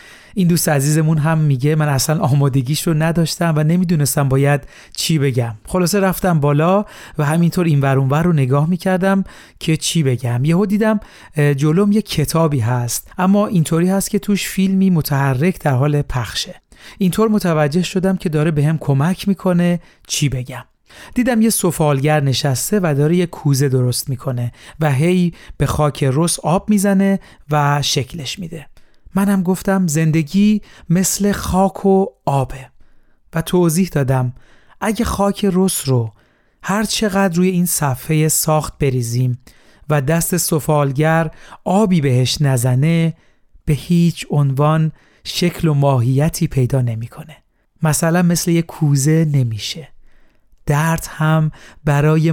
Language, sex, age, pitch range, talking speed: Persian, male, 40-59, 140-180 Hz, 135 wpm